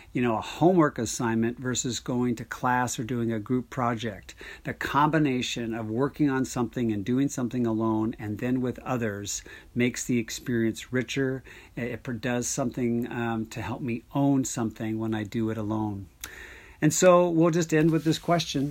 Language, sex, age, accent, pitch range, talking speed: English, male, 50-69, American, 110-125 Hz, 175 wpm